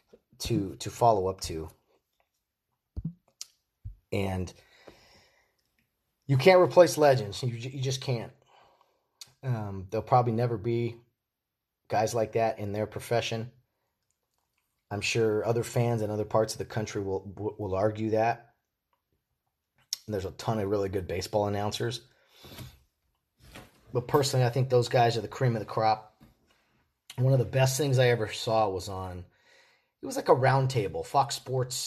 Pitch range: 100-125 Hz